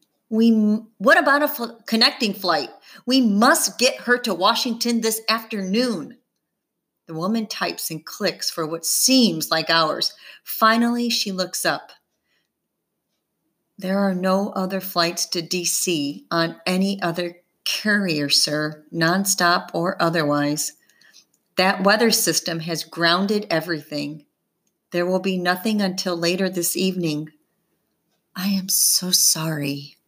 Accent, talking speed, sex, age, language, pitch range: American, 125 wpm, female, 40-59, English, 160-205 Hz